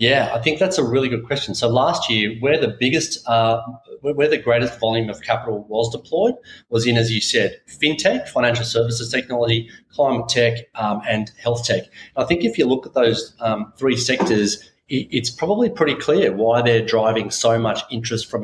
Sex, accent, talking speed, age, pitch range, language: male, Australian, 200 wpm, 30-49, 110-125 Hz, English